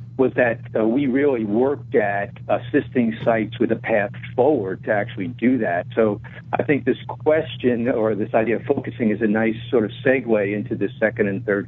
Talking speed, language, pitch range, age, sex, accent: 195 wpm, English, 110-130 Hz, 60-79, male, American